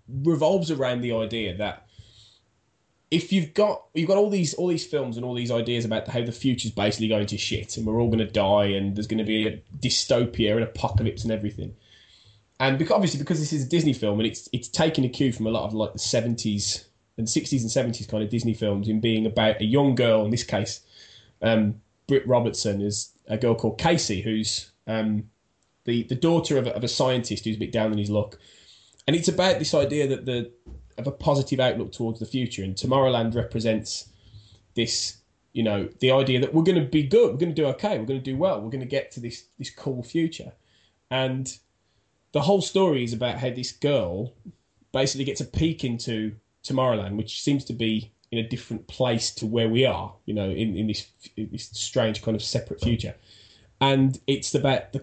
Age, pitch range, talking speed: 20-39, 110-135 Hz, 215 wpm